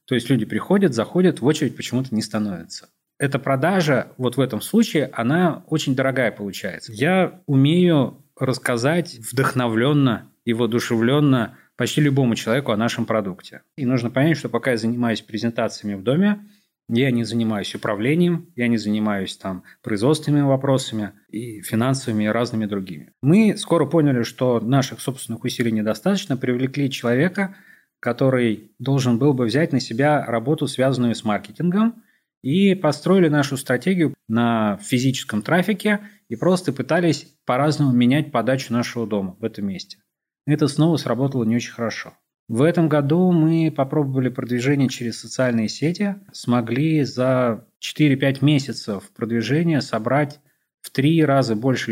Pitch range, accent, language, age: 115-150 Hz, native, Russian, 30-49